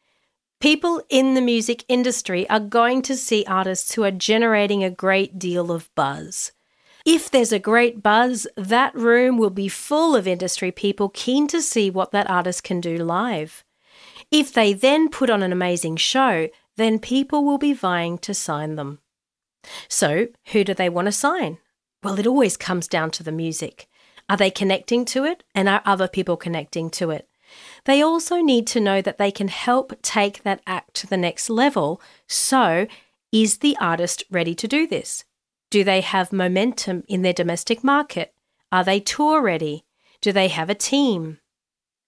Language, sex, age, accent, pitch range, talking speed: English, female, 40-59, Australian, 185-255 Hz, 175 wpm